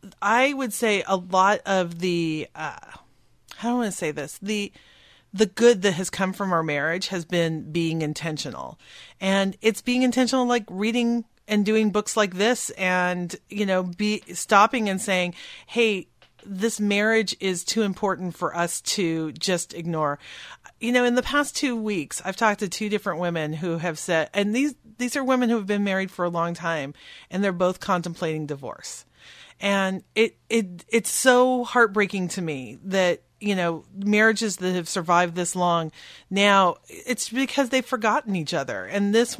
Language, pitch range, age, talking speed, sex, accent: English, 175-220 Hz, 40-59, 175 wpm, female, American